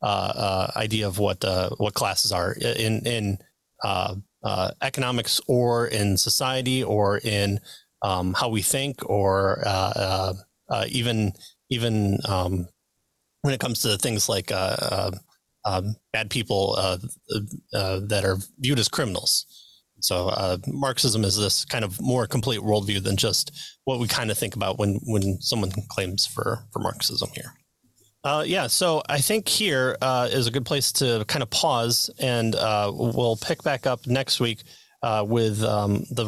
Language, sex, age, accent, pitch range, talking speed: English, male, 30-49, American, 105-125 Hz, 170 wpm